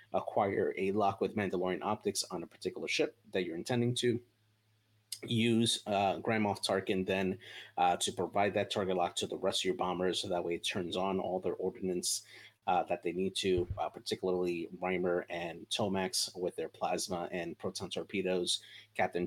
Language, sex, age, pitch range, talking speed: English, male, 30-49, 90-110 Hz, 180 wpm